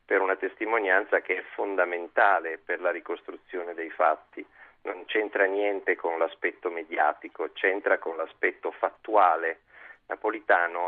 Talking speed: 120 wpm